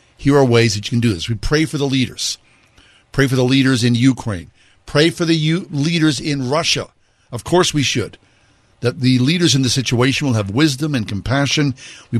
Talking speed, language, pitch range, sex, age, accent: 200 wpm, English, 105-135 Hz, male, 50-69, American